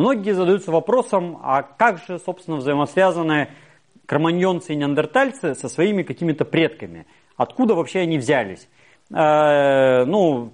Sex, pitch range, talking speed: male, 150-205 Hz, 120 wpm